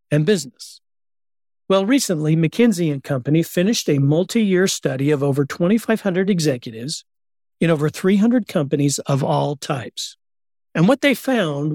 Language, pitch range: English, 140-190 Hz